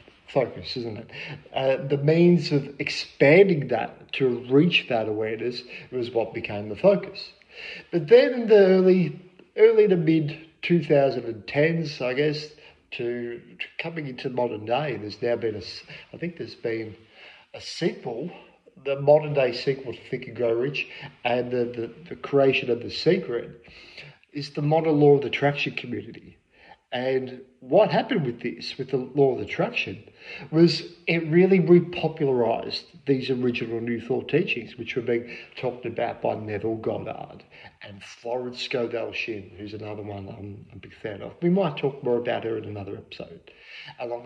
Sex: male